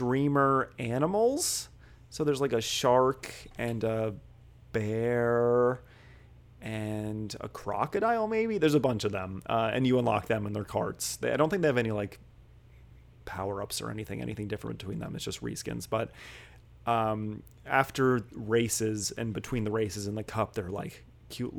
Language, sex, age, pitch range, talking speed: English, male, 30-49, 110-135 Hz, 165 wpm